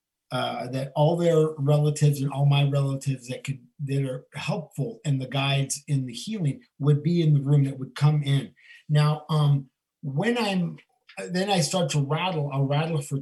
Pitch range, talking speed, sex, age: 140-170 Hz, 185 wpm, male, 50-69